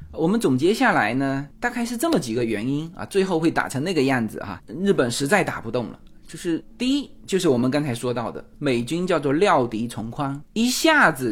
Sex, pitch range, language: male, 135-225 Hz, Chinese